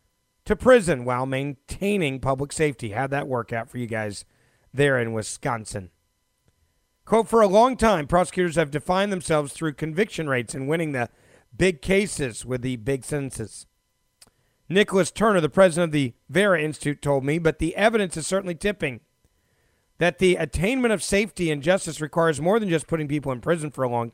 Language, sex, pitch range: English, male, 125-180 Hz